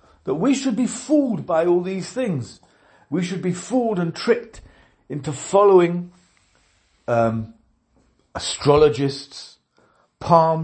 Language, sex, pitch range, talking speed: English, male, 120-170 Hz, 115 wpm